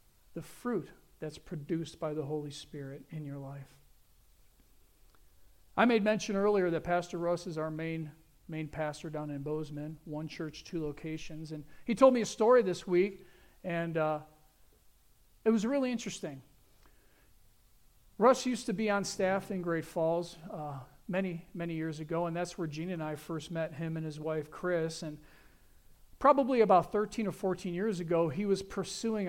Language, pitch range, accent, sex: English, 145-200 Hz, American, male